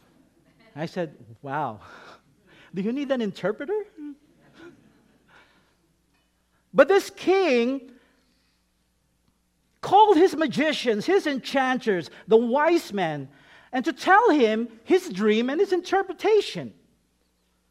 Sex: male